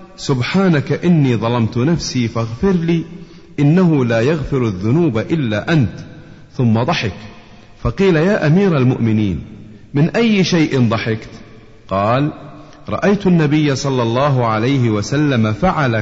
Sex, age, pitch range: male, 40-59, 110-155 Hz